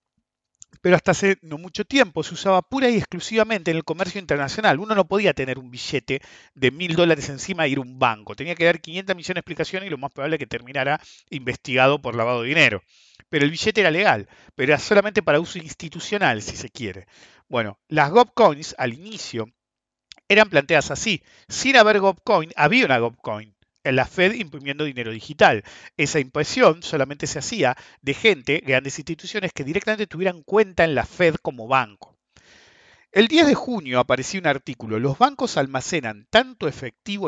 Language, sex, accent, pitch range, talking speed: English, male, Argentinian, 135-200 Hz, 180 wpm